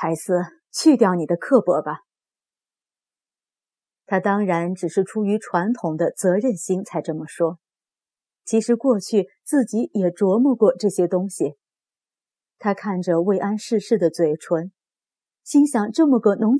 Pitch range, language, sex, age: 175-245 Hz, Chinese, female, 30-49